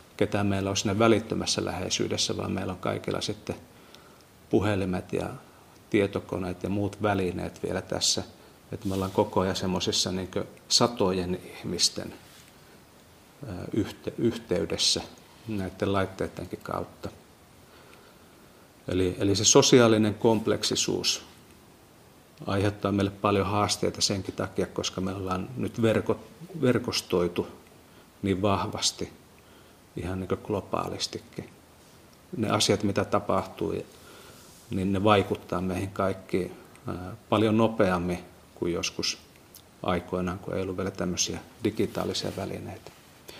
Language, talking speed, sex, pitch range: Finnish, 100 wpm, male, 95-110 Hz